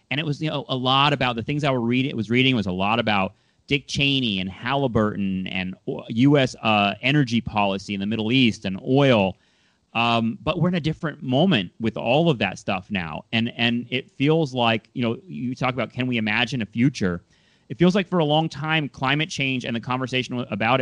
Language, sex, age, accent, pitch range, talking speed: English, male, 30-49, American, 110-140 Hz, 210 wpm